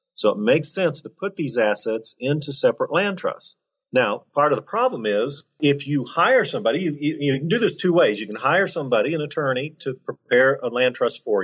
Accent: American